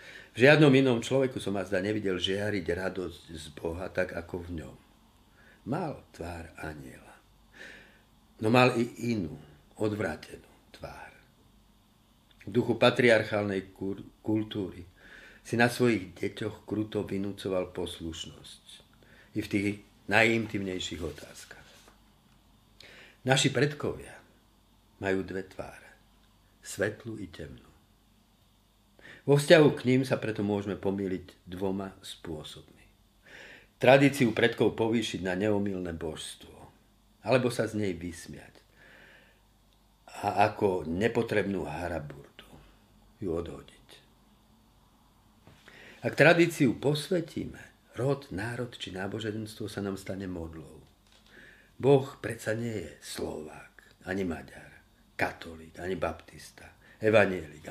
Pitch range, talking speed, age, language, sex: 90-115 Hz, 105 wpm, 50-69, Slovak, male